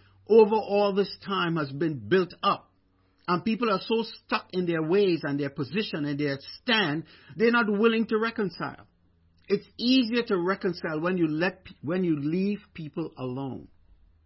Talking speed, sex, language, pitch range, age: 165 wpm, male, English, 110-180 Hz, 50-69